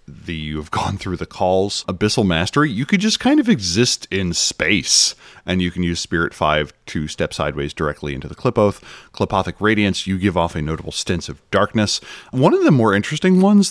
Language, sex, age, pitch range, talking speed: English, male, 30-49, 85-110 Hz, 205 wpm